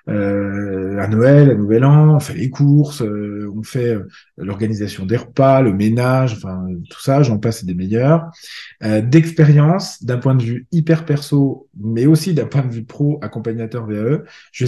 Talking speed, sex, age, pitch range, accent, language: 180 wpm, male, 20-39, 110-155 Hz, French, French